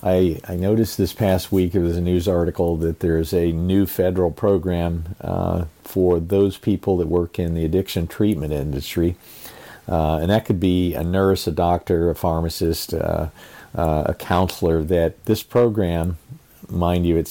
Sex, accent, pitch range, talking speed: male, American, 85-100 Hz, 170 wpm